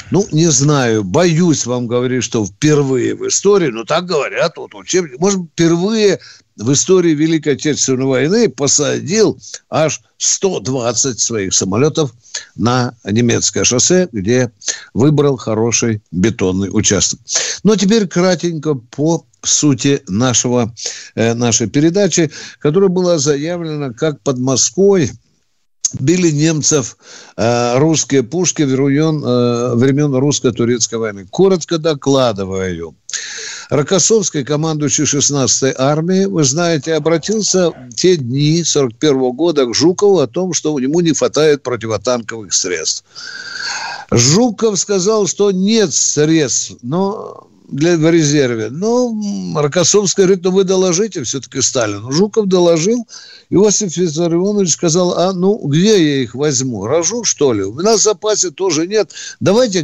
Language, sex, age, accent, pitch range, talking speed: Russian, male, 60-79, native, 125-185 Hz, 125 wpm